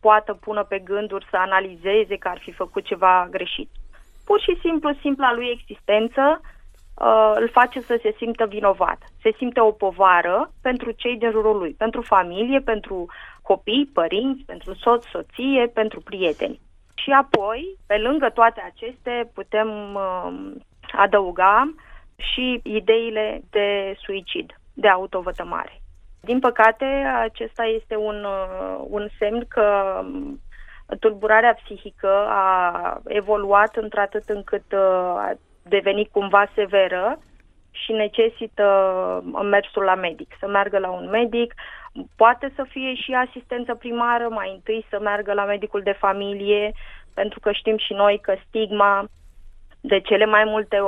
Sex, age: female, 20-39